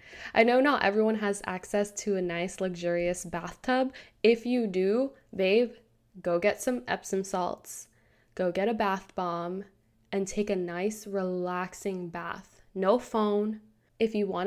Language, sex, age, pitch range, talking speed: English, female, 10-29, 180-215 Hz, 150 wpm